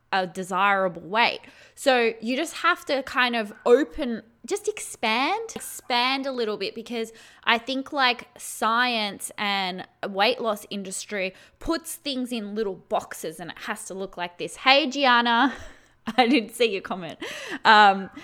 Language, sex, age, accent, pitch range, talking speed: English, female, 20-39, Australian, 200-255 Hz, 150 wpm